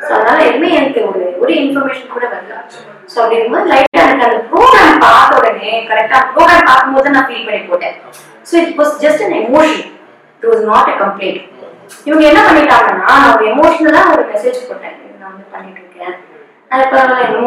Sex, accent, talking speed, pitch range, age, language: female, native, 50 wpm, 200-270 Hz, 20-39, Tamil